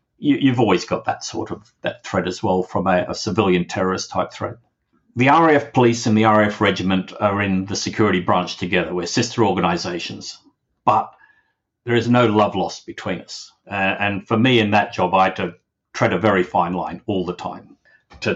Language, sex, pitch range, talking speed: English, male, 90-120 Hz, 195 wpm